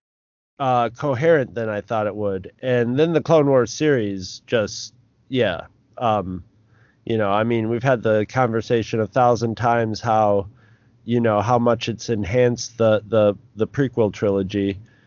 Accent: American